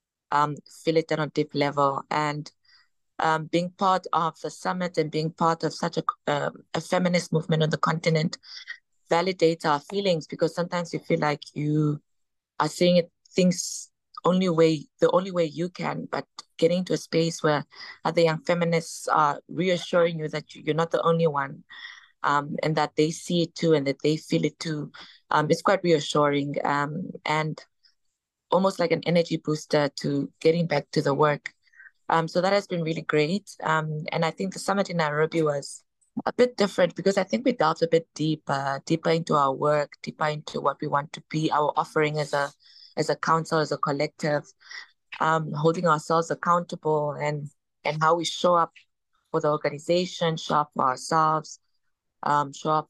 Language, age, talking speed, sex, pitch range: English, 20-39, 180 wpm, female, 150-175 Hz